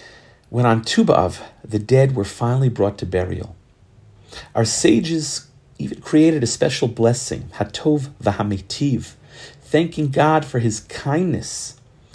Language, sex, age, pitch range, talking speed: English, male, 40-59, 110-145 Hz, 120 wpm